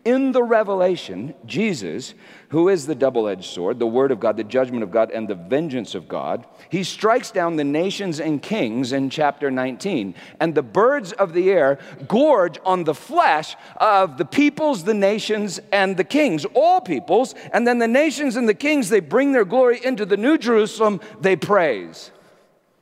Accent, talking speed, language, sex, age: American, 180 wpm, English, male, 50-69